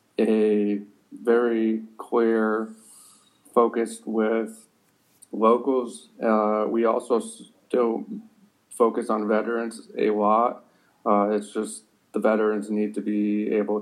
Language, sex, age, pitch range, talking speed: English, male, 30-49, 105-115 Hz, 105 wpm